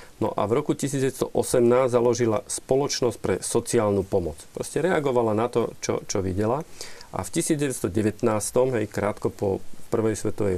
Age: 40-59